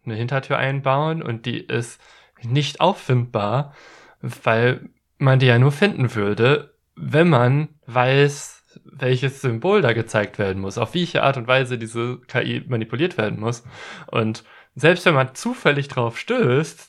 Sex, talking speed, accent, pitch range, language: male, 145 wpm, German, 105-135 Hz, German